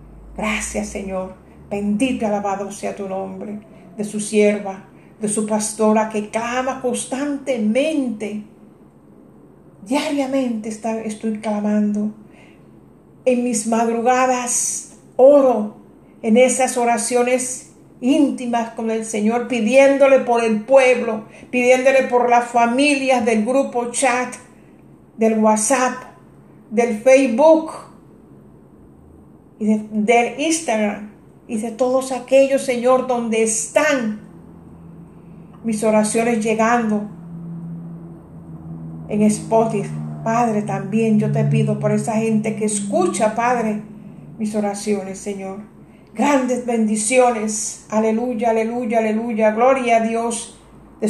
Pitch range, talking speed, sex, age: 210-245 Hz, 100 wpm, female, 50-69